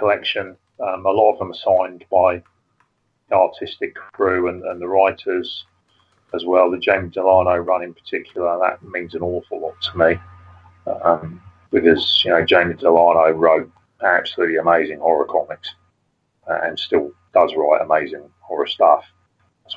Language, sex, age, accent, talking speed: English, male, 40-59, British, 155 wpm